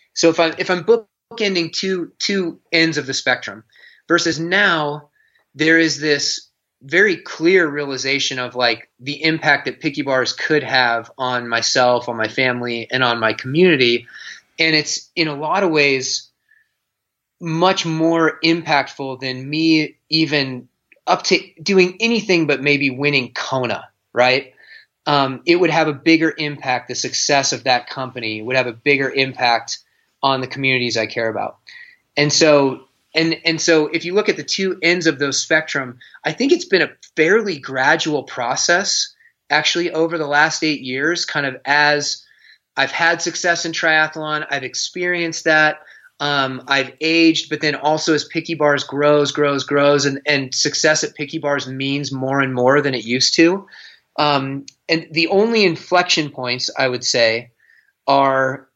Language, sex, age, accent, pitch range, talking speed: English, male, 30-49, American, 130-165 Hz, 160 wpm